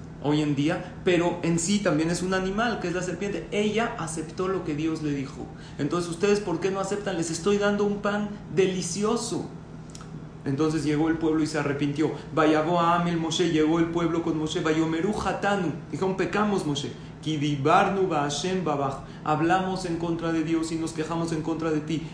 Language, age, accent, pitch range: Spanish, 40-59, Mexican, 155-180 Hz